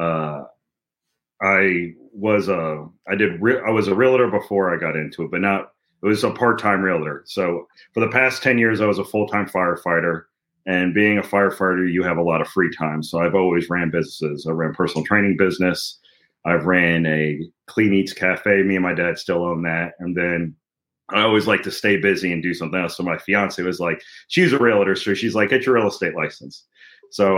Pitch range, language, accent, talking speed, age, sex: 90-105 Hz, English, American, 215 wpm, 30-49, male